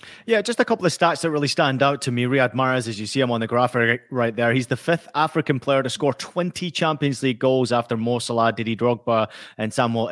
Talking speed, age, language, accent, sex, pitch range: 245 wpm, 30-49, English, British, male, 125-180 Hz